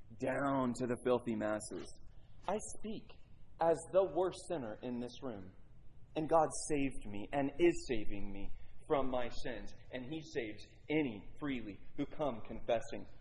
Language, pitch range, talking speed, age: English, 115-165 Hz, 150 wpm, 30-49